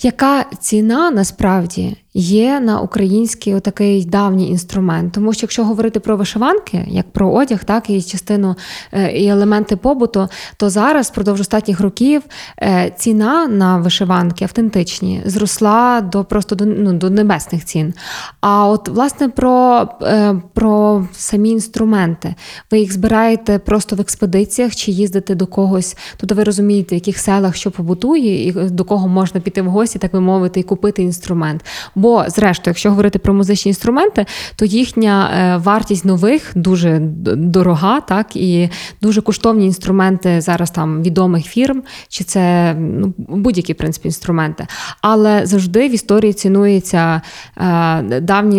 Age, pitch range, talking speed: 20-39, 180-215 Hz, 140 wpm